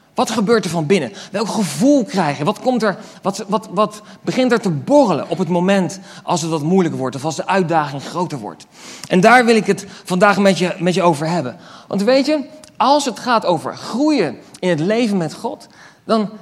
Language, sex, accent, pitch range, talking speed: Dutch, male, Dutch, 165-220 Hz, 210 wpm